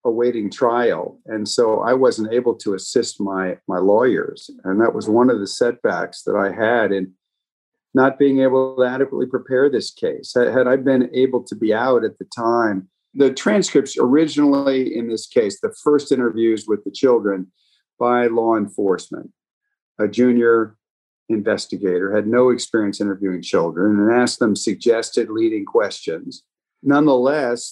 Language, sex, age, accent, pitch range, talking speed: English, male, 50-69, American, 110-135 Hz, 155 wpm